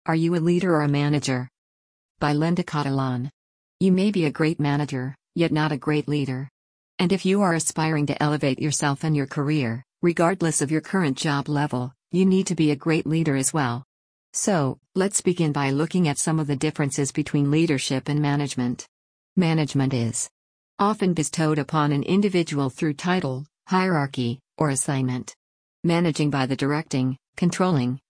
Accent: American